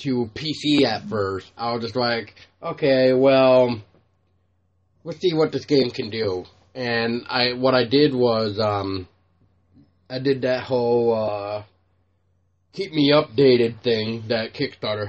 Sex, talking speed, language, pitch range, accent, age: male, 145 wpm, English, 95-125 Hz, American, 20-39